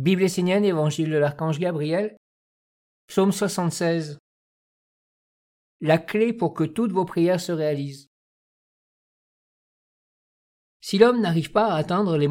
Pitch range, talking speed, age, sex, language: 150-180 Hz, 115 wpm, 50-69, male, French